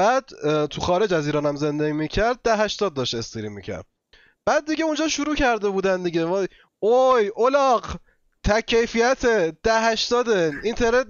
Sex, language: male, Persian